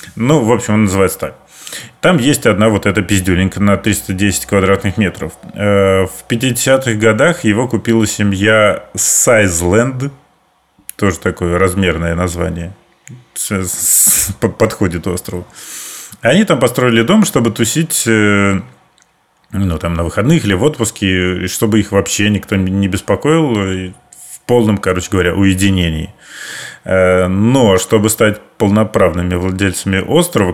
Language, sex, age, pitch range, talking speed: Russian, male, 30-49, 95-110 Hz, 115 wpm